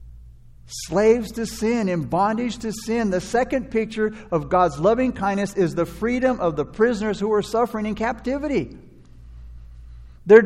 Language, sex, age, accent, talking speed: English, male, 60-79, American, 150 wpm